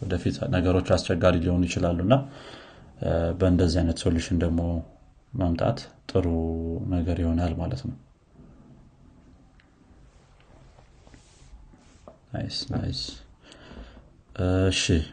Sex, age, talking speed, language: male, 30-49, 75 wpm, Amharic